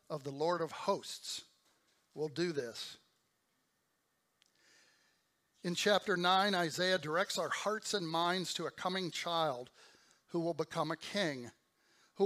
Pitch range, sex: 155-195 Hz, male